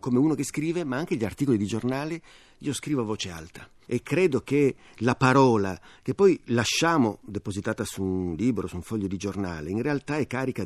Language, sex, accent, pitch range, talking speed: Italian, male, native, 105-145 Hz, 205 wpm